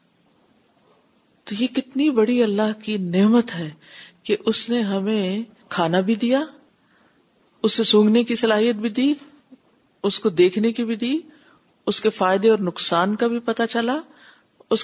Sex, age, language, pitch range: female, 50-69, Urdu, 195-250 Hz